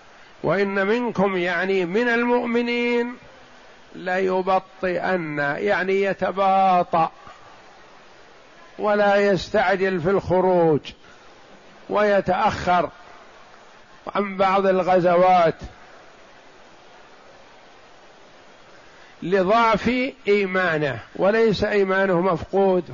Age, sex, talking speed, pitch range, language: 50-69, male, 60 wpm, 185-215 Hz, Arabic